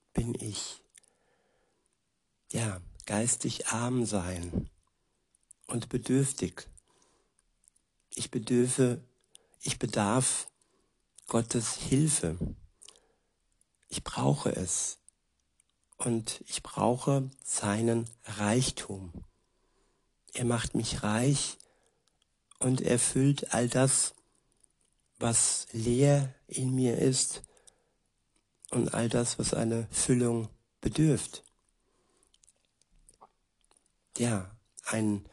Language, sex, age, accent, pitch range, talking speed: German, male, 60-79, German, 105-130 Hz, 75 wpm